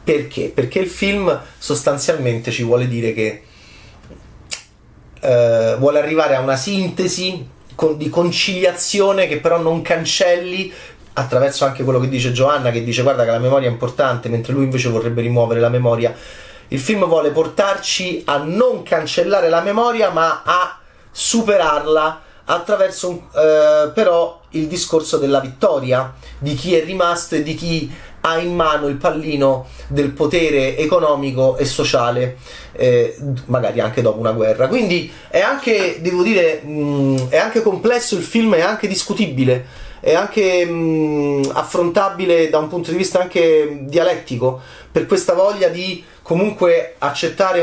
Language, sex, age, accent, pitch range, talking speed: Italian, male, 30-49, native, 125-175 Hz, 145 wpm